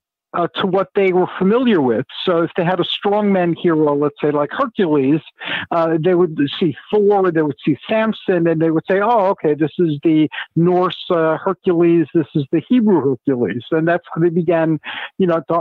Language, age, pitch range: English, 50-69, 160-190 Hz